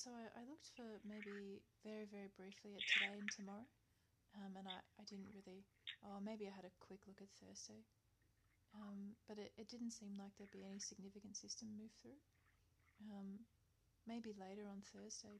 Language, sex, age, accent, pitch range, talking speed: English, female, 30-49, Australian, 180-215 Hz, 185 wpm